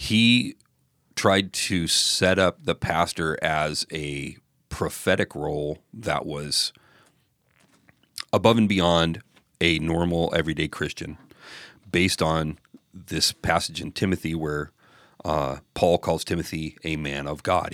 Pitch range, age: 80-95 Hz, 40-59